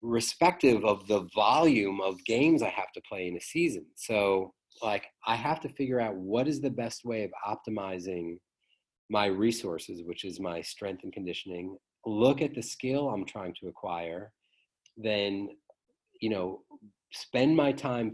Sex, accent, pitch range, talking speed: male, American, 100-120 Hz, 160 wpm